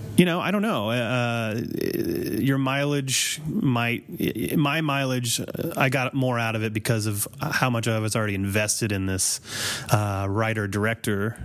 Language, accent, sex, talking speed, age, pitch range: English, American, male, 150 wpm, 30-49, 110-135 Hz